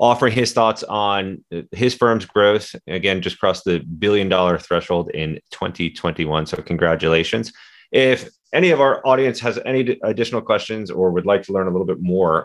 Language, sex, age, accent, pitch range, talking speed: English, male, 30-49, American, 85-105 Hz, 170 wpm